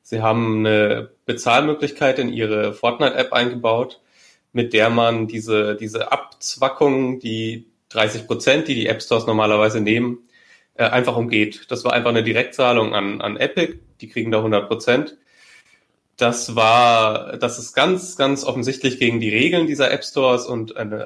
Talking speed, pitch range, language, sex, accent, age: 140 wpm, 110-125 Hz, German, male, German, 30-49